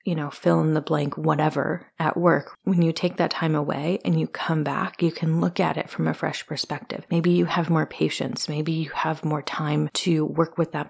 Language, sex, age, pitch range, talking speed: English, female, 30-49, 150-180 Hz, 230 wpm